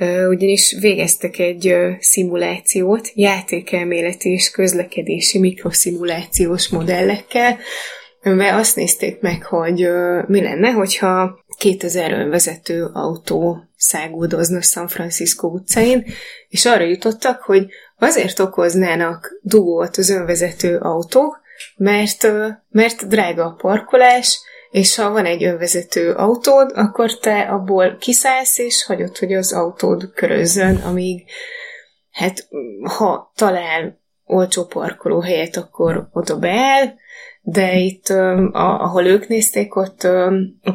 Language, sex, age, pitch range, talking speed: Hungarian, female, 20-39, 175-220 Hz, 105 wpm